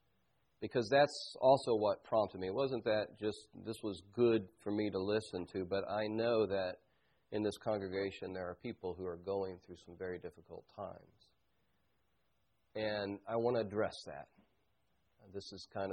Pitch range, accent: 100-140 Hz, American